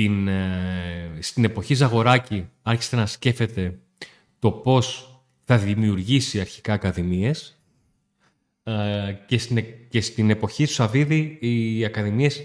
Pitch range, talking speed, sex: 100-125 Hz, 100 wpm, male